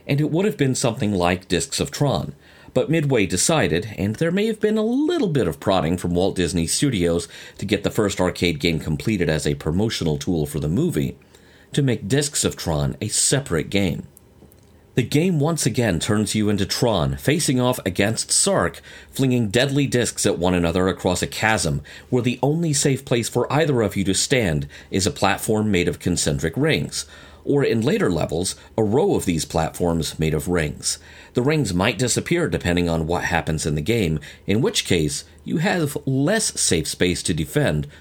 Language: English